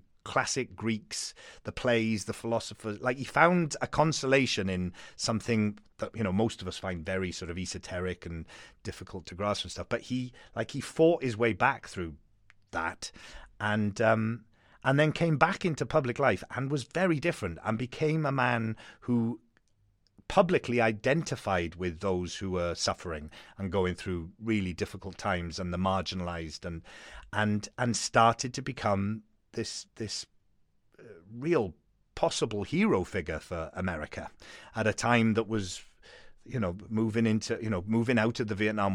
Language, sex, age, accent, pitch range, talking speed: English, male, 30-49, British, 95-120 Hz, 160 wpm